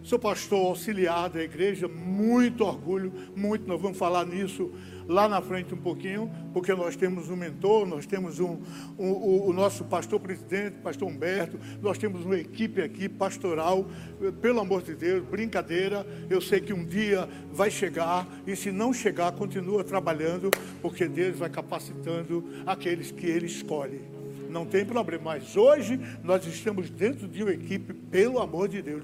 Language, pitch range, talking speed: Portuguese, 180-215 Hz, 160 wpm